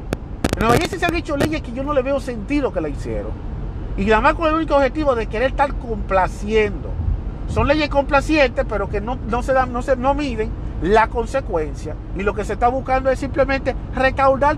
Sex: male